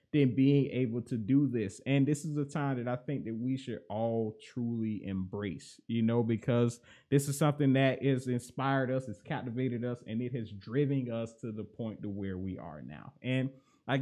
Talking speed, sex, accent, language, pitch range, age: 205 wpm, male, American, English, 120-165 Hz, 20-39